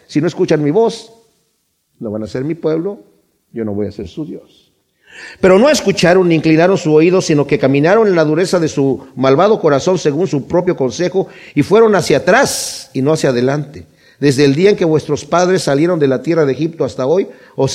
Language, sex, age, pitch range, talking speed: Spanish, male, 50-69, 145-185 Hz, 215 wpm